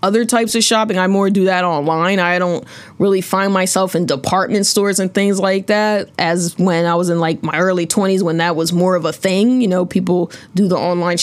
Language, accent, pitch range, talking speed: English, American, 180-240 Hz, 230 wpm